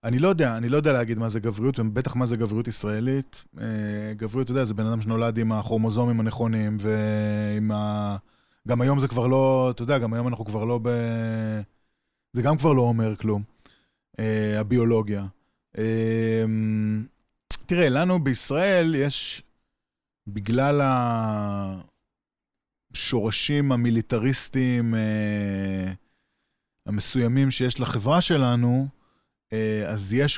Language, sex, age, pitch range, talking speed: Hebrew, male, 20-39, 110-135 Hz, 120 wpm